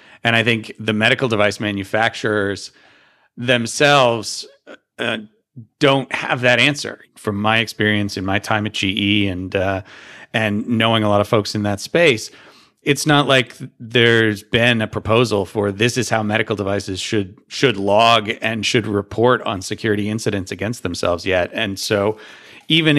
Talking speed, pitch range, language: 155 wpm, 100-120 Hz, English